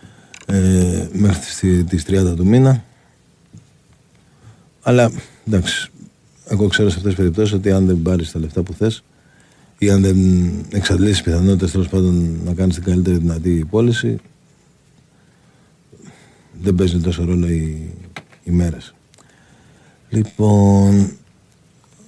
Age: 50-69